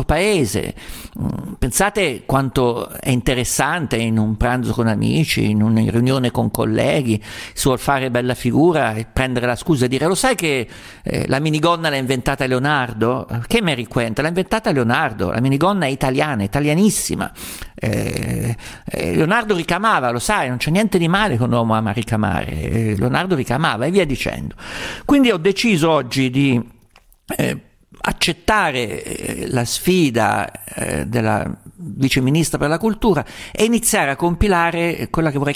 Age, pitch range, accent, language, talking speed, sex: 50-69, 120-170 Hz, native, Italian, 155 wpm, male